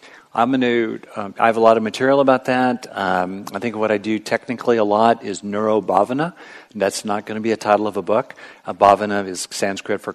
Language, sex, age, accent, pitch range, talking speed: English, male, 50-69, American, 95-115 Hz, 230 wpm